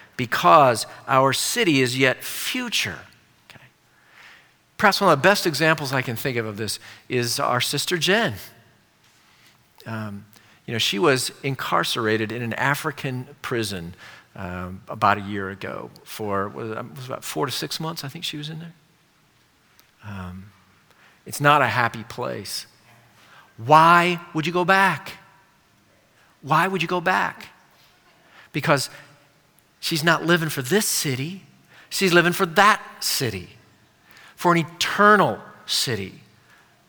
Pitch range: 115-175 Hz